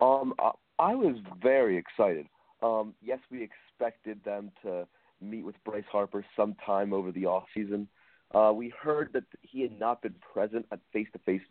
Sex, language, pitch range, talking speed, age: male, English, 100-115 Hz, 170 wpm, 30-49